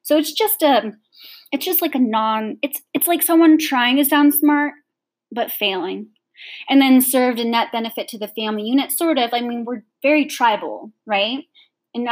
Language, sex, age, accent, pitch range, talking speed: English, female, 20-39, American, 205-280 Hz, 190 wpm